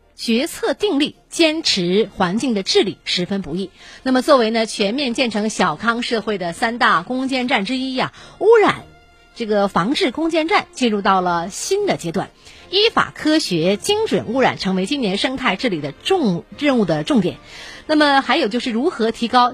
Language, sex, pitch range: Chinese, female, 200-295 Hz